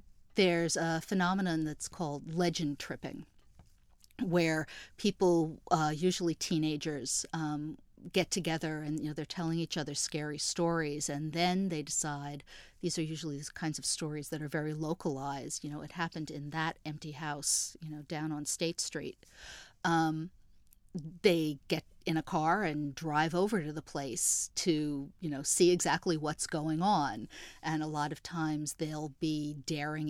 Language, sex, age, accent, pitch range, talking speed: English, female, 50-69, American, 150-170 Hz, 160 wpm